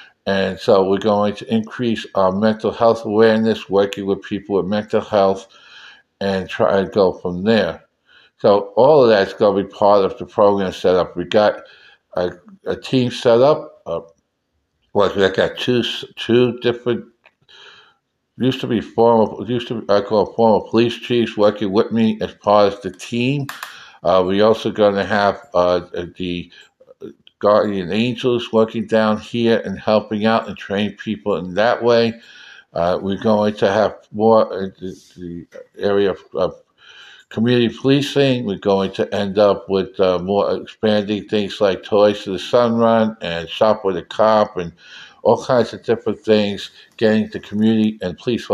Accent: American